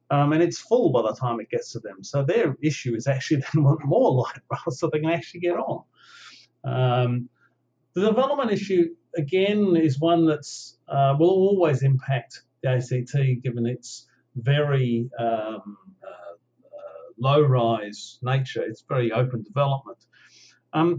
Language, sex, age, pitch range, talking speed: English, male, 50-69, 120-150 Hz, 155 wpm